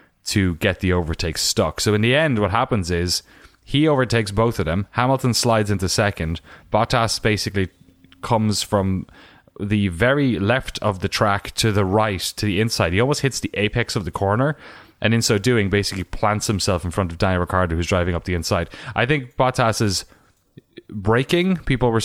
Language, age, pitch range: English, 20-39, 95-115 Hz